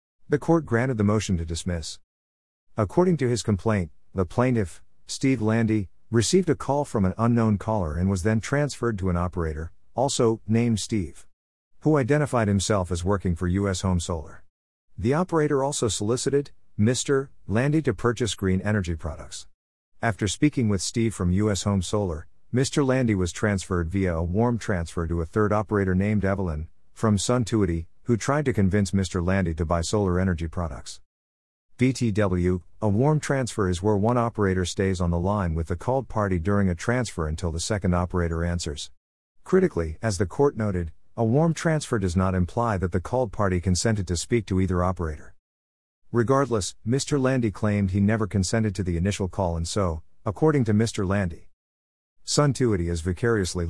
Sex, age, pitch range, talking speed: male, 50-69, 85-115 Hz, 170 wpm